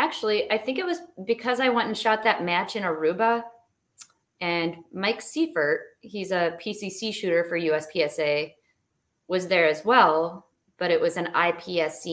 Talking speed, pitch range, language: 160 wpm, 160-215 Hz, English